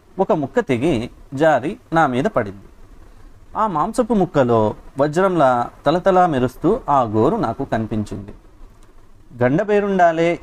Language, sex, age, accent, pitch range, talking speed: Telugu, male, 30-49, native, 110-165 Hz, 105 wpm